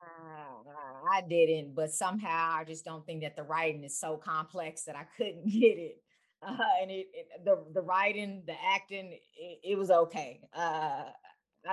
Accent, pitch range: American, 165-225 Hz